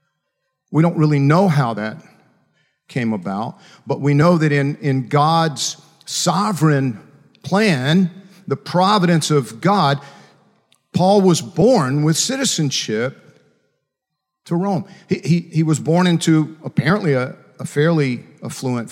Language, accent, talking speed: English, American, 125 wpm